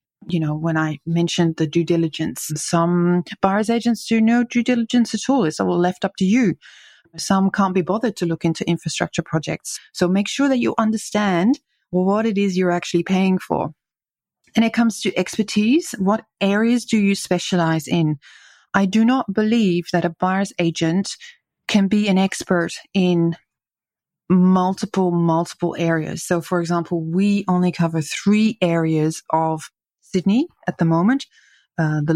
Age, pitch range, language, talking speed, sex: 30-49, 165-205 Hz, English, 160 wpm, female